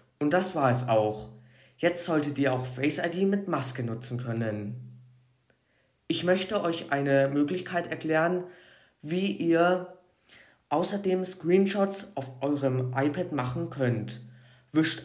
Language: German